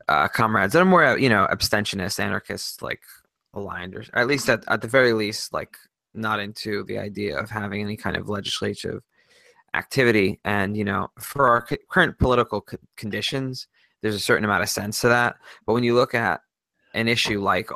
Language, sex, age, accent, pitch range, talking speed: English, male, 20-39, American, 100-115 Hz, 190 wpm